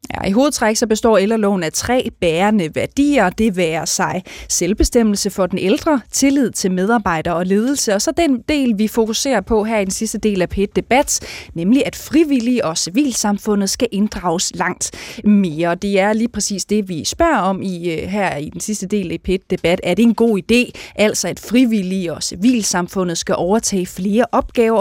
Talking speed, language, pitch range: 180 wpm, Danish, 185-230 Hz